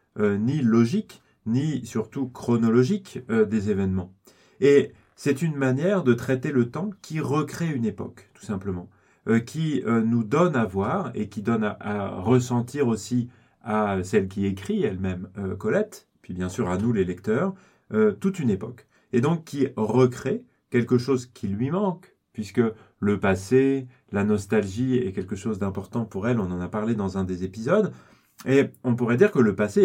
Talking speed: 180 wpm